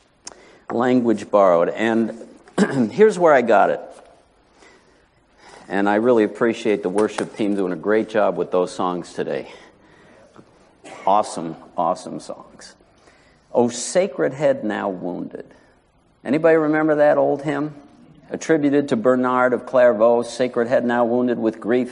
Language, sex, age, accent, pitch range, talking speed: English, male, 60-79, American, 110-150 Hz, 130 wpm